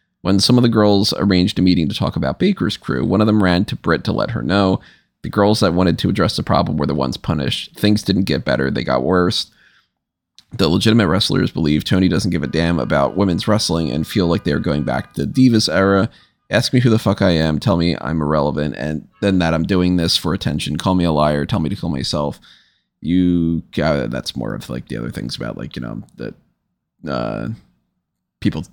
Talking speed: 230 wpm